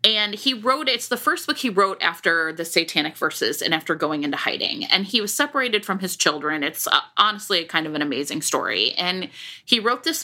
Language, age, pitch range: English, 30-49, 175-235 Hz